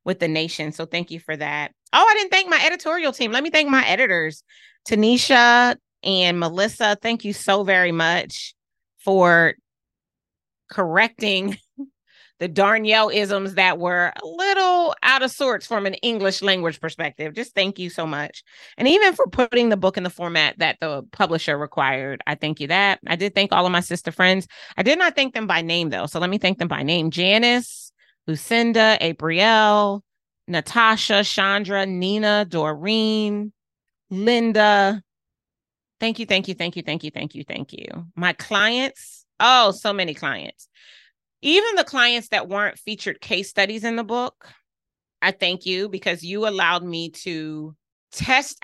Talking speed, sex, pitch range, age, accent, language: 170 wpm, female, 170-225 Hz, 30-49, American, English